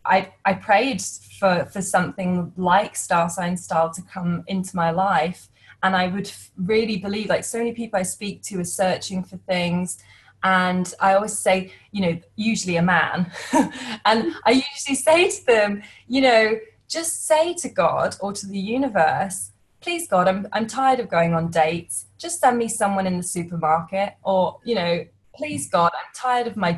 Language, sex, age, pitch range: English, female, 20-39, 175-220 Hz